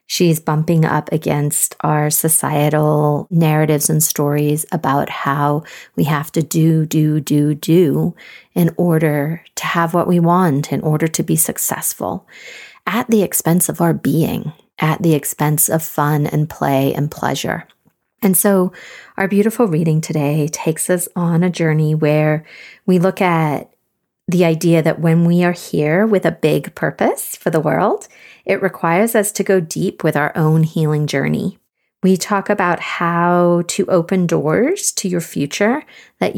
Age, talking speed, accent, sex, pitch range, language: 40-59, 160 wpm, American, female, 155-190 Hz, English